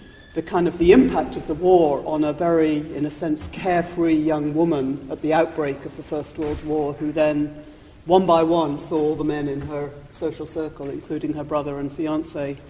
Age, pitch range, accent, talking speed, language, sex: 50-69, 145-175 Hz, British, 205 wpm, English, female